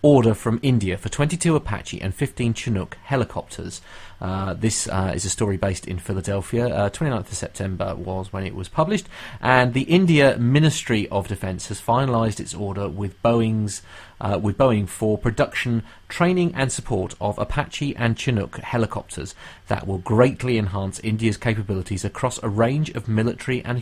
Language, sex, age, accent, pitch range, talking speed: English, male, 30-49, British, 100-130 Hz, 160 wpm